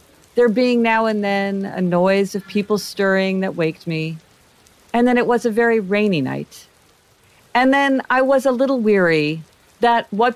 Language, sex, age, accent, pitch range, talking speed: English, female, 50-69, American, 160-220 Hz, 175 wpm